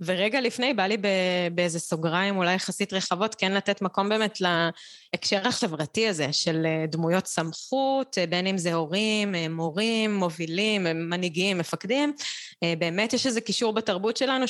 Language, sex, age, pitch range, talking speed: Hebrew, female, 20-39, 170-210 Hz, 135 wpm